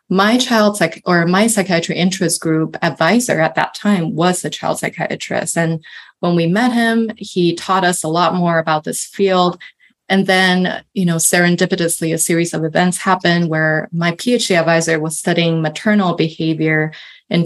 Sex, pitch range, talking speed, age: female, 160-195 Hz, 170 wpm, 20-39